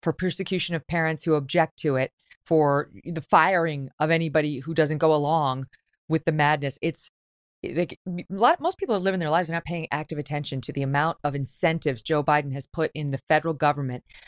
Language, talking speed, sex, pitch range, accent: English, 205 wpm, female, 150-195 Hz, American